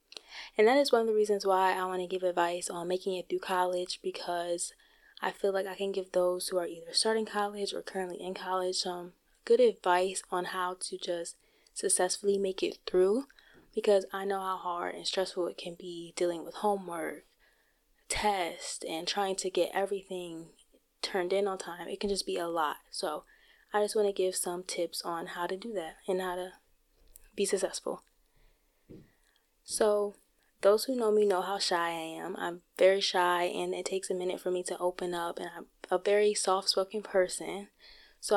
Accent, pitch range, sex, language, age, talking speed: American, 180-205 Hz, female, English, 20-39, 190 wpm